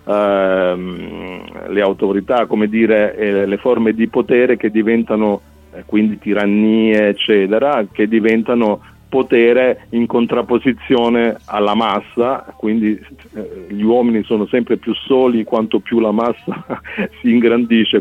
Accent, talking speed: native, 125 wpm